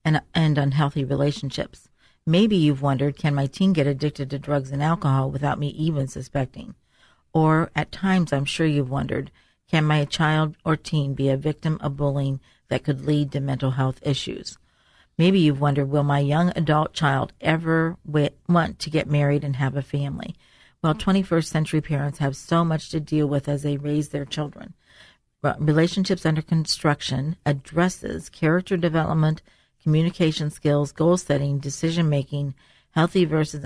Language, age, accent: English, 50-69, American